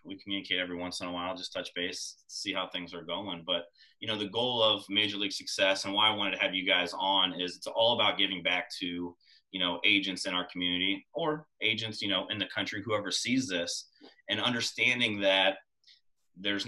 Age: 30-49